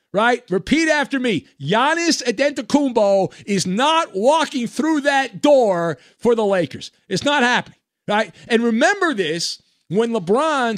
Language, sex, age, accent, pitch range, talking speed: English, male, 50-69, American, 165-240 Hz, 135 wpm